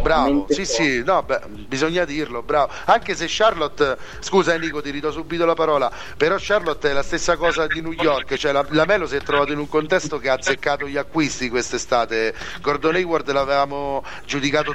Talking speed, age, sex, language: 190 wpm, 40-59, male, Italian